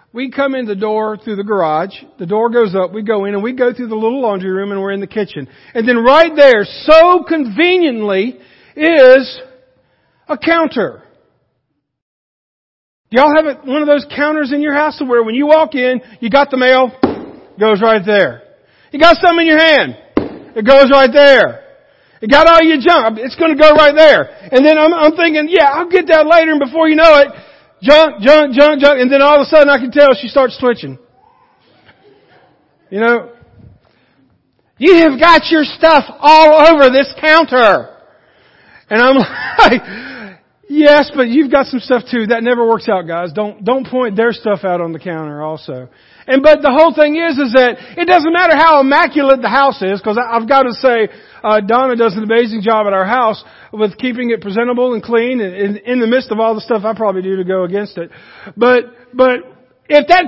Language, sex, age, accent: English, male, 50-69, American